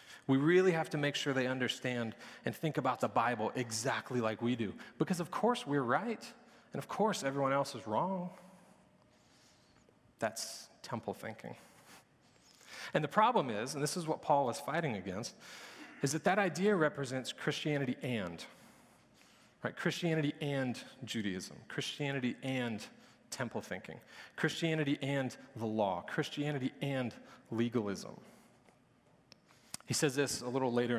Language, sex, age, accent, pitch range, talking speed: English, male, 40-59, American, 125-160 Hz, 140 wpm